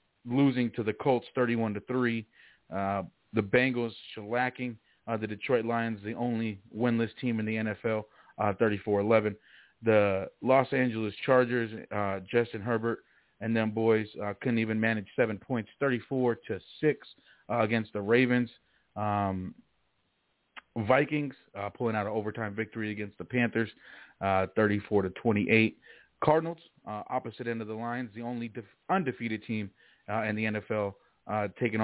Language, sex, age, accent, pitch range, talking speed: English, male, 40-59, American, 105-120 Hz, 160 wpm